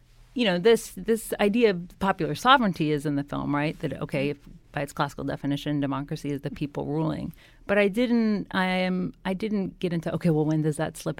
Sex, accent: female, American